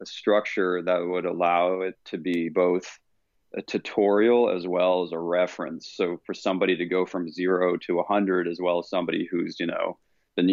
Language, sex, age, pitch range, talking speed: English, male, 30-49, 90-100 Hz, 195 wpm